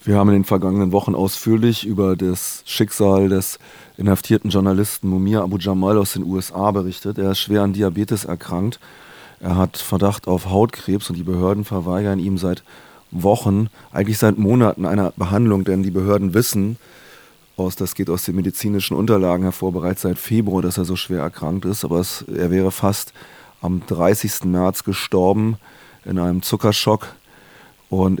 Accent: German